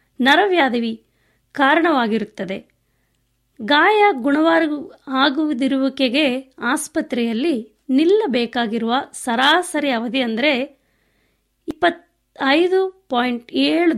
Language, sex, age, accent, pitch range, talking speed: Kannada, female, 20-39, native, 235-310 Hz, 45 wpm